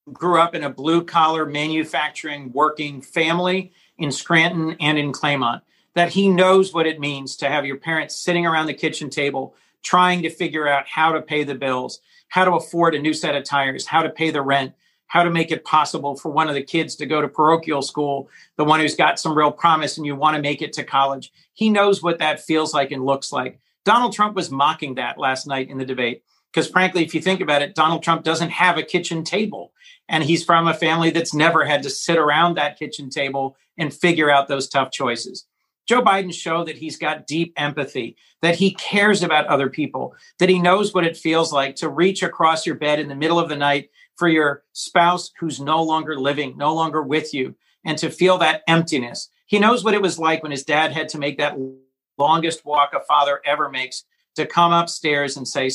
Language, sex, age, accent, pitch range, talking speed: English, male, 40-59, American, 140-165 Hz, 220 wpm